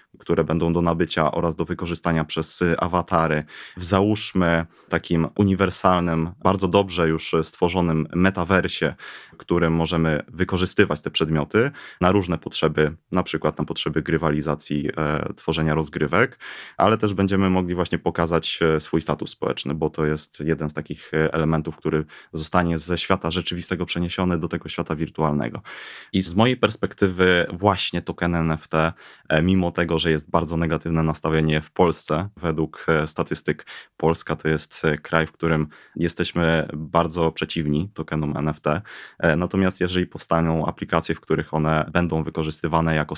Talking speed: 140 wpm